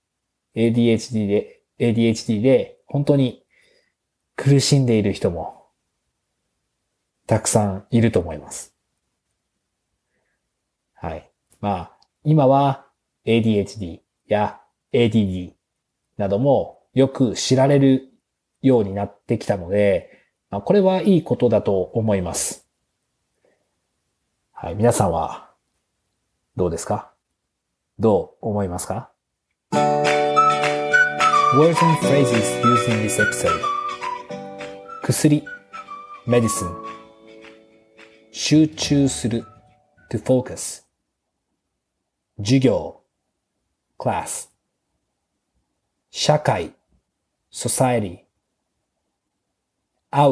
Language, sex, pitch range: Japanese, male, 105-145 Hz